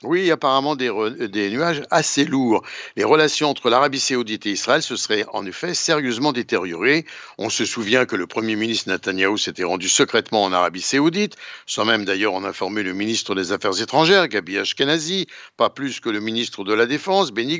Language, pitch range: Italian, 115-170 Hz